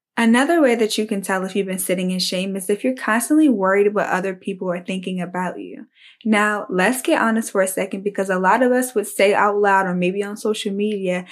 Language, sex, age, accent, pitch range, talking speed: English, female, 10-29, American, 185-220 Hz, 240 wpm